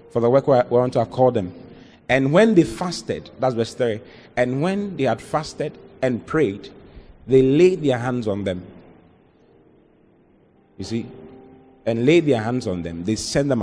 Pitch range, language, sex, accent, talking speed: 105-150 Hz, English, male, Nigerian, 175 wpm